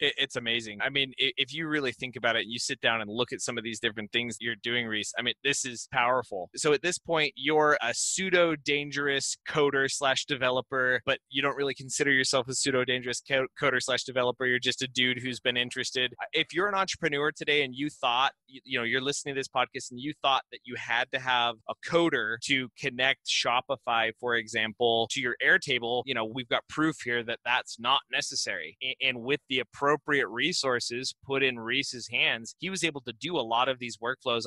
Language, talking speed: English, 210 wpm